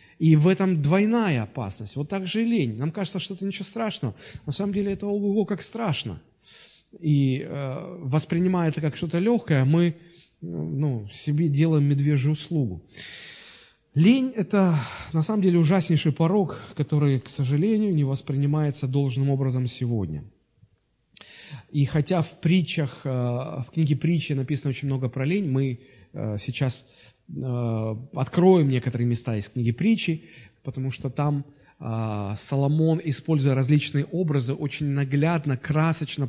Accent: native